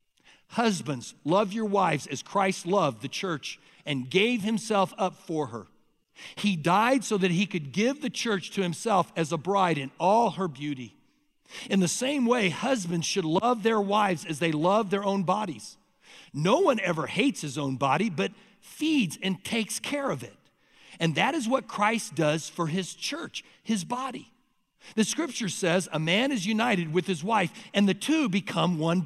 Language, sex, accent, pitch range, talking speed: English, male, American, 160-220 Hz, 180 wpm